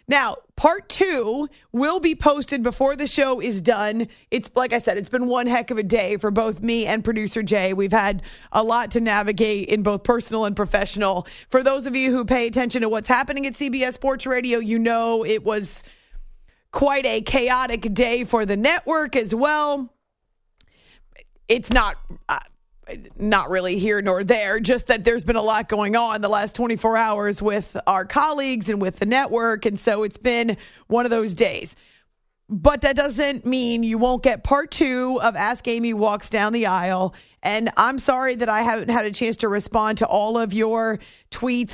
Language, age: English, 30-49